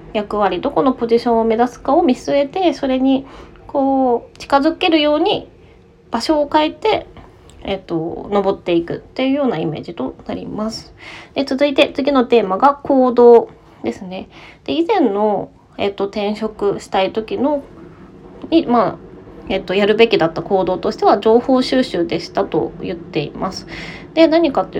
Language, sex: Japanese, female